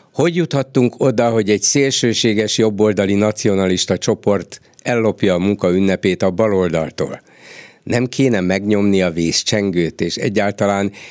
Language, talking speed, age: Hungarian, 115 wpm, 50-69